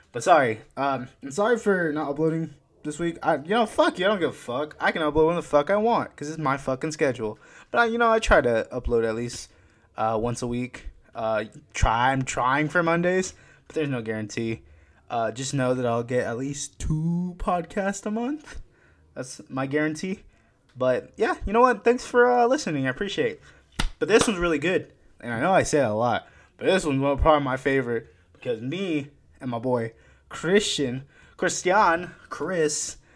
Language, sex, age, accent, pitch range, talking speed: English, male, 20-39, American, 125-165 Hz, 200 wpm